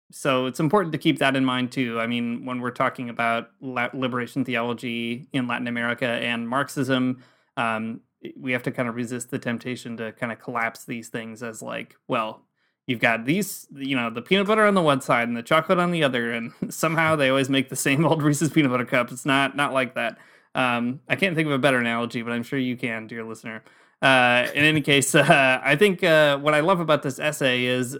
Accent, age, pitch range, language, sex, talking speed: American, 20-39, 120-145 Hz, English, male, 225 wpm